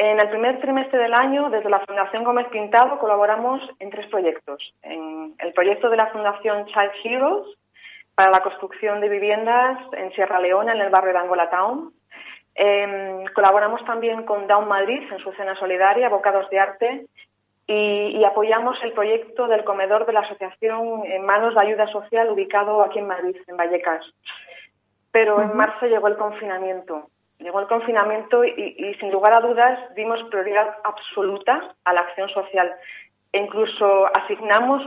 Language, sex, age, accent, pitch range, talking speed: Spanish, female, 30-49, Spanish, 190-225 Hz, 165 wpm